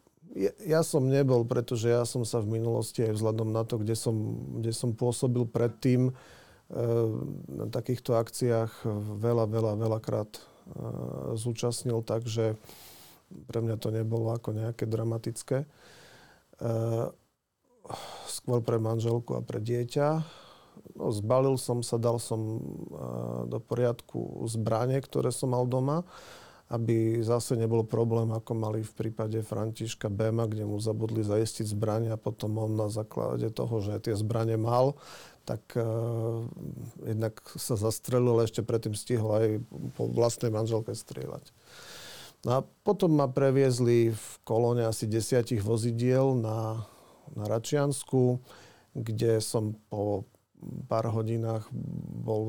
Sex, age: male, 40-59